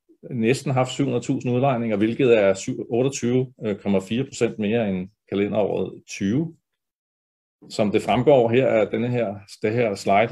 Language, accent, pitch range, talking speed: Danish, native, 100-115 Hz, 115 wpm